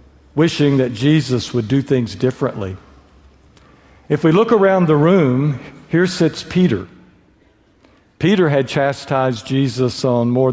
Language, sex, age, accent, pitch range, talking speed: English, male, 60-79, American, 115-155 Hz, 125 wpm